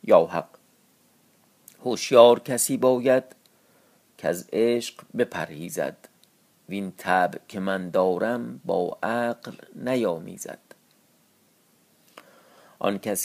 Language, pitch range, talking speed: Persian, 100-135 Hz, 90 wpm